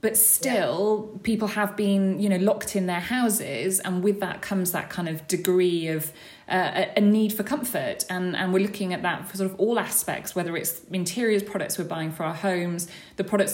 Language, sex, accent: English, female, British